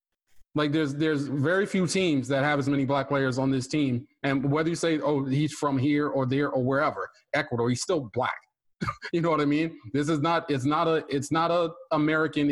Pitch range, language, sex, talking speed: 125-150 Hz, English, male, 220 wpm